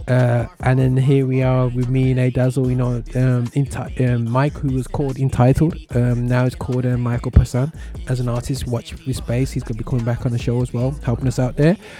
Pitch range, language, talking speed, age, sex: 125-145 Hz, English, 240 wpm, 20-39, male